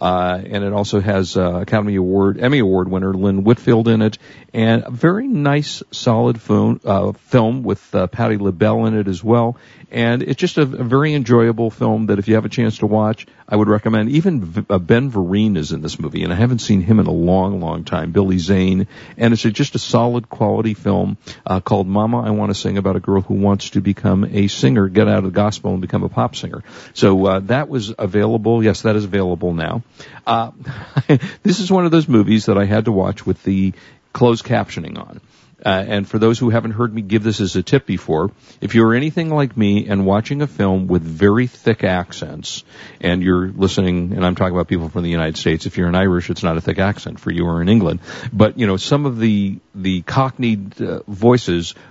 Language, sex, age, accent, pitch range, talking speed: English, male, 50-69, American, 95-115 Hz, 225 wpm